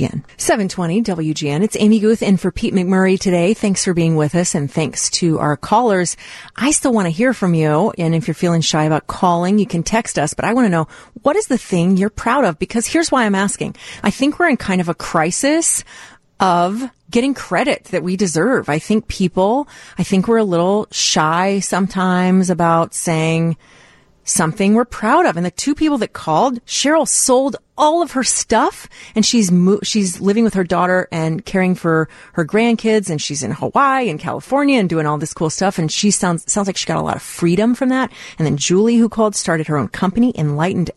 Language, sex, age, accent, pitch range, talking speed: English, female, 30-49, American, 165-220 Hz, 210 wpm